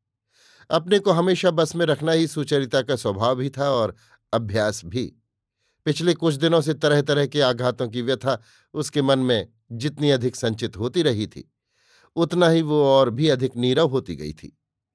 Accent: native